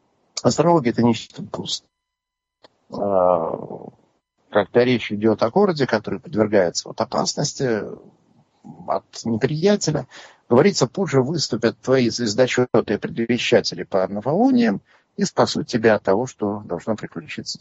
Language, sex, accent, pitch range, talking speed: Russian, male, native, 105-135 Hz, 110 wpm